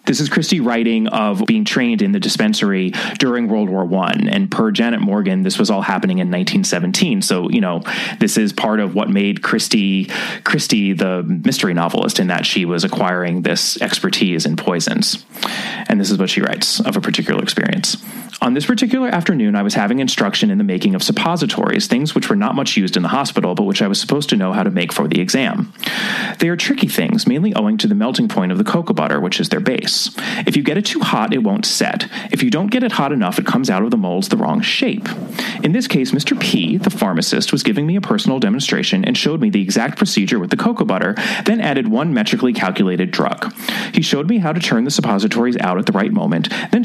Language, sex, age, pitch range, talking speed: English, male, 30-49, 200-230 Hz, 230 wpm